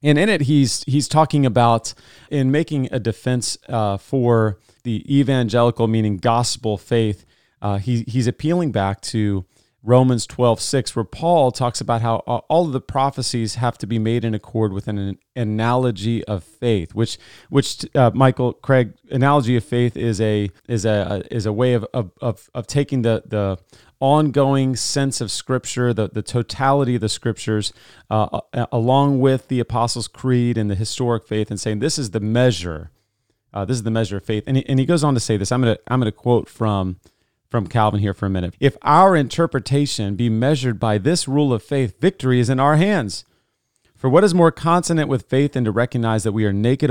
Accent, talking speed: American, 195 wpm